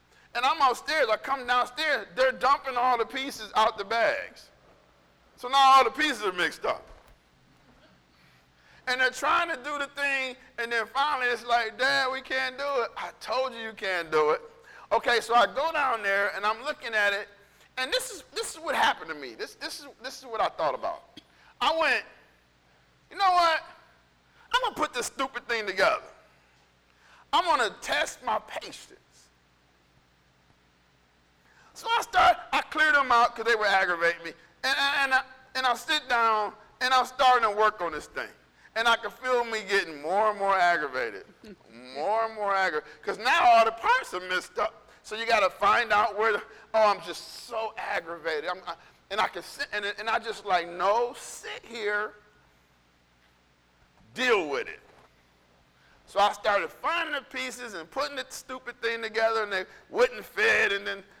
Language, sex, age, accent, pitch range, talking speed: English, male, 50-69, American, 185-270 Hz, 185 wpm